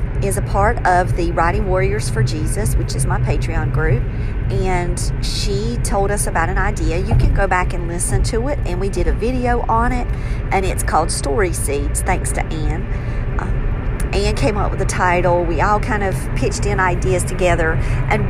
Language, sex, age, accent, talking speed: English, female, 50-69, American, 195 wpm